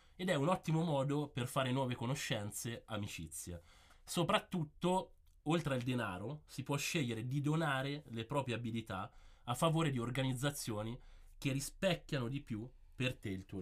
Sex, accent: male, native